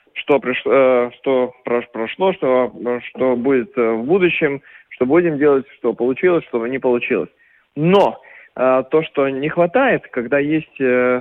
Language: Russian